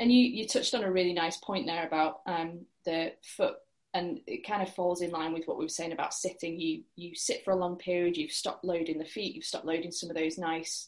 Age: 20-39